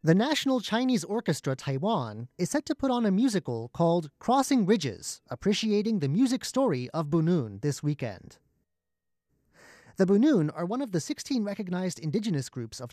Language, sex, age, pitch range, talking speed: English, male, 30-49, 140-215 Hz, 160 wpm